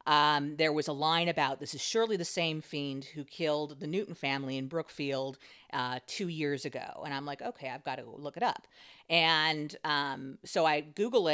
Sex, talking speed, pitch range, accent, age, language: female, 200 wpm, 145-180 Hz, American, 40-59, English